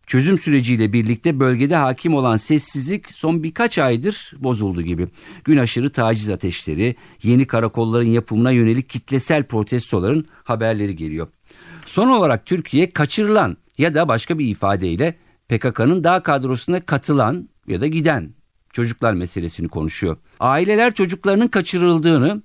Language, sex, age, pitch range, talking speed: Turkish, male, 50-69, 115-170 Hz, 125 wpm